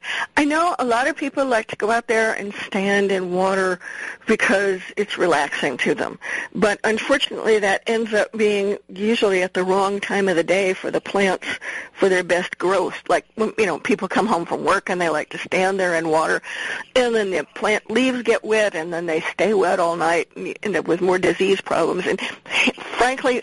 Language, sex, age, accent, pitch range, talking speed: English, female, 50-69, American, 185-235 Hz, 205 wpm